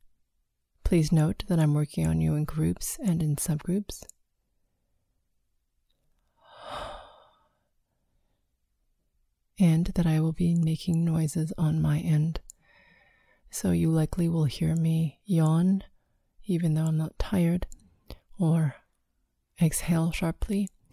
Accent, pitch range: American, 150-170 Hz